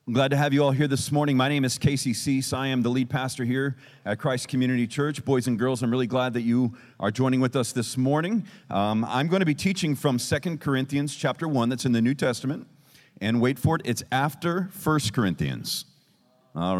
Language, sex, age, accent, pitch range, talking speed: English, male, 40-59, American, 120-145 Hz, 225 wpm